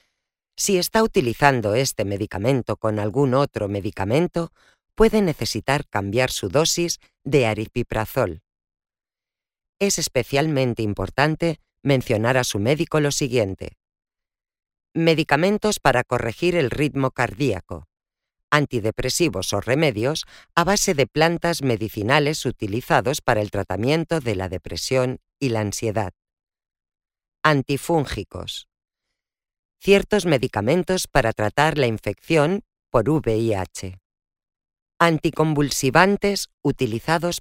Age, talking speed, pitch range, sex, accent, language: 40-59, 95 wpm, 110-160 Hz, female, Spanish, English